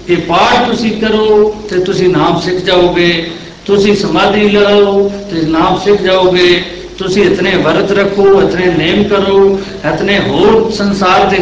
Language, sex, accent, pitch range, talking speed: Hindi, male, native, 180-215 Hz, 115 wpm